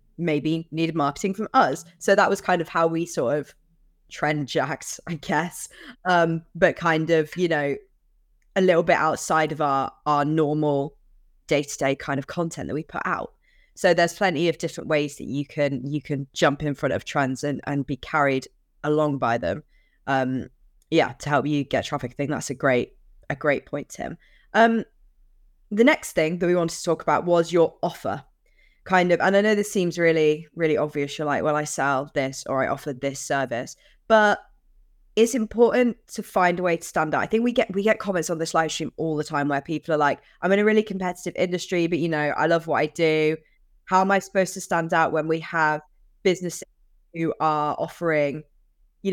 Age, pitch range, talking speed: 20-39, 150-175 Hz, 210 wpm